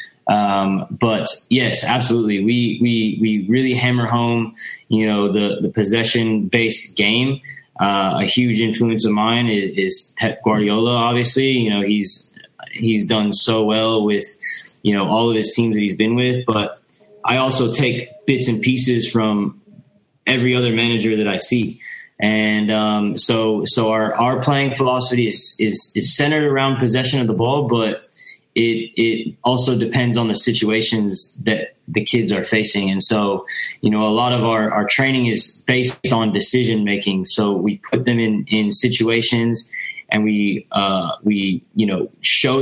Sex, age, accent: male, 20-39, American